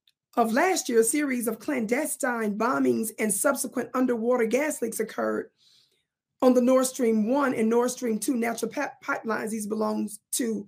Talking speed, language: 155 wpm, English